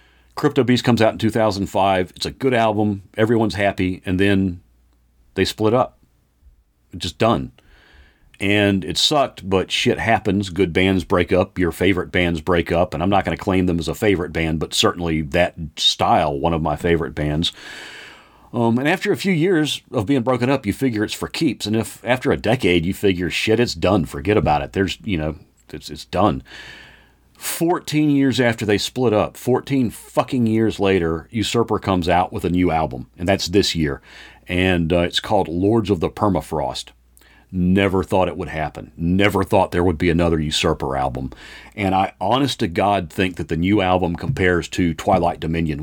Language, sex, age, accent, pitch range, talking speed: English, male, 40-59, American, 85-110 Hz, 190 wpm